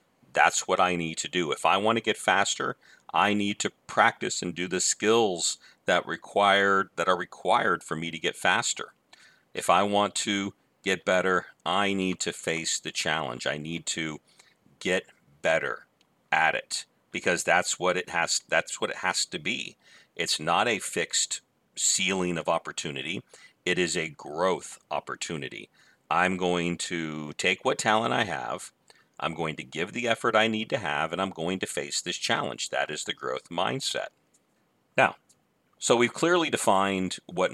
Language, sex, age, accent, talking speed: English, male, 50-69, American, 175 wpm